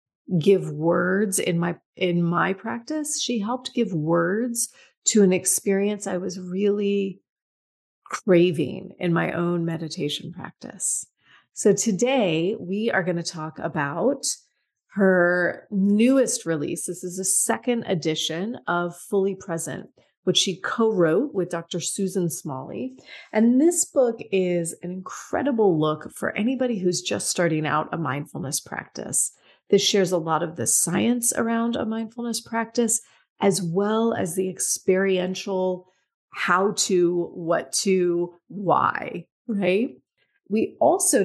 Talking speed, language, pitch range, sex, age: 130 wpm, English, 175-220 Hz, female, 30-49